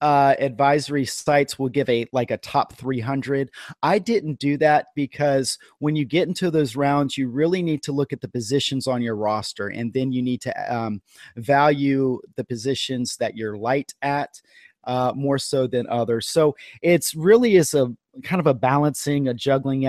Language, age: English, 30-49